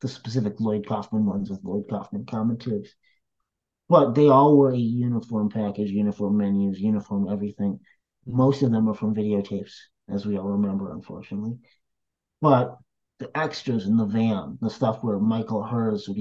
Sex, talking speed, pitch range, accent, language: male, 160 wpm, 105-135 Hz, American, English